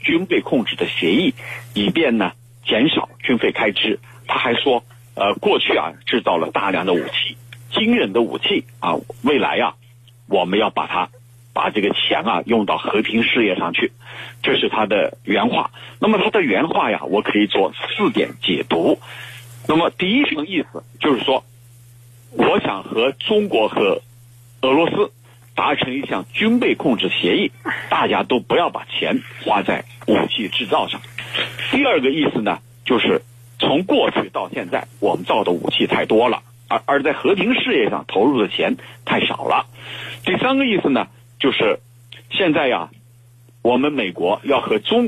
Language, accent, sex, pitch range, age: Chinese, native, male, 120-130 Hz, 50-69